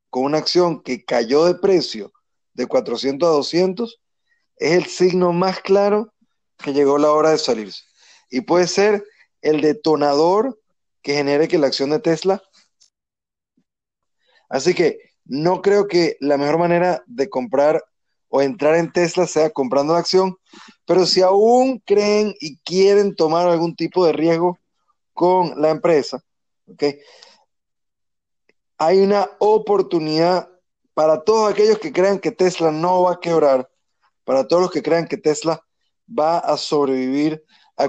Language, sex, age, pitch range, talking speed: Spanish, male, 30-49, 145-190 Hz, 145 wpm